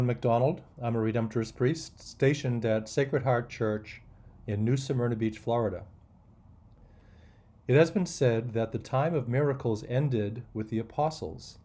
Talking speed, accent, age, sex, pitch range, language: 145 wpm, American, 40-59, male, 105-130 Hz, English